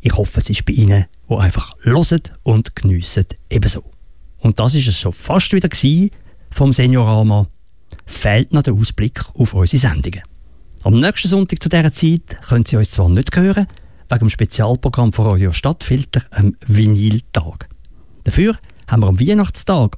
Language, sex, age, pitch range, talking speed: English, male, 50-69, 90-125 Hz, 160 wpm